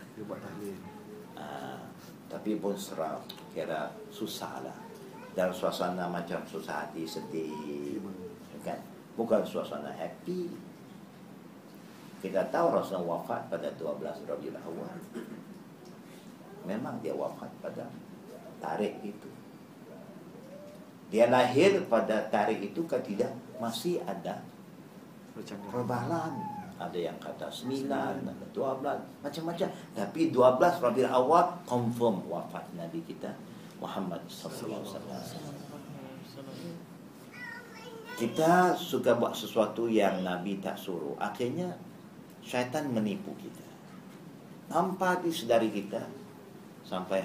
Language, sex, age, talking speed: Malay, male, 50-69, 90 wpm